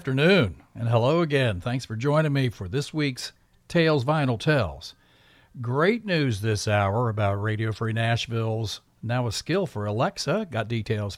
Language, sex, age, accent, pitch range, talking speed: English, male, 50-69, American, 110-140 Hz, 160 wpm